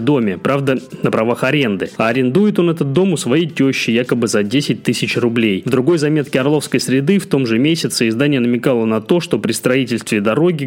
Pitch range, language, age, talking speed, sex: 120-155 Hz, Russian, 20-39, 190 wpm, male